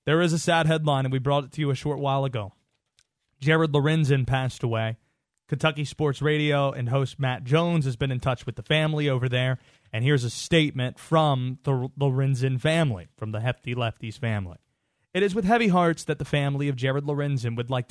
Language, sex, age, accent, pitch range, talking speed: English, male, 20-39, American, 125-155 Hz, 205 wpm